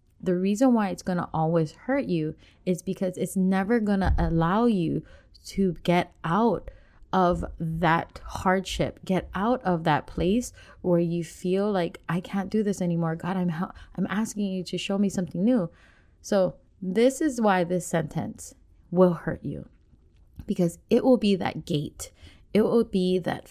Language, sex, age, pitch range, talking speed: English, female, 20-39, 165-205 Hz, 170 wpm